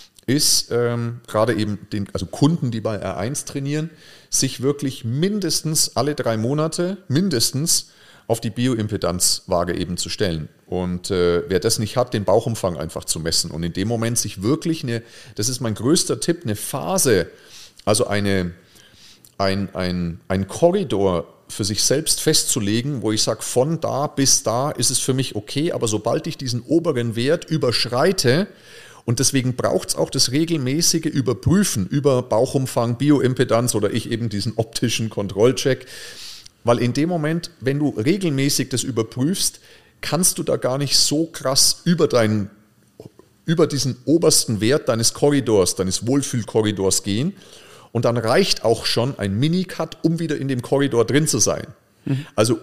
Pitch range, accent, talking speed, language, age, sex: 110-155 Hz, German, 155 wpm, German, 40-59, male